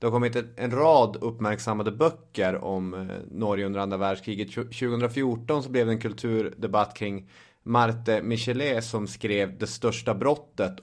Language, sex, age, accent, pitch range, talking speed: English, male, 30-49, Swedish, 100-120 Hz, 145 wpm